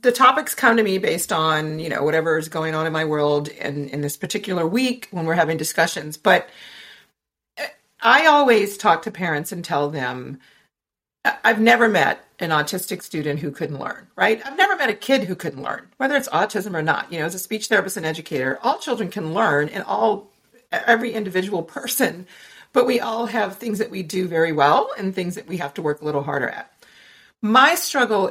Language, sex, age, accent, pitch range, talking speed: English, female, 40-59, American, 155-215 Hz, 205 wpm